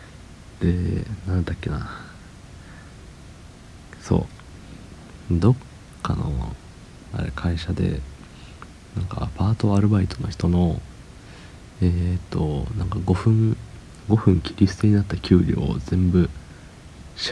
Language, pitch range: Japanese, 85-105 Hz